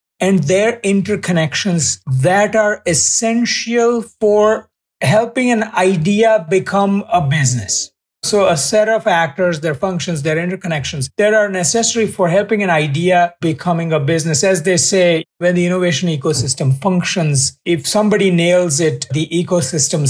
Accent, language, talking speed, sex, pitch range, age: Indian, English, 135 wpm, male, 155-205 Hz, 50-69